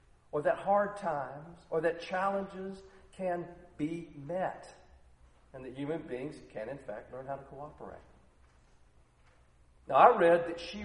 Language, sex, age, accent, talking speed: English, male, 40-59, American, 145 wpm